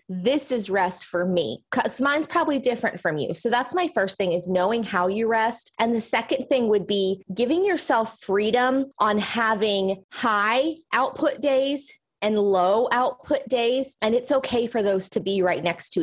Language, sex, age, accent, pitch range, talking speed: English, female, 20-39, American, 195-260 Hz, 185 wpm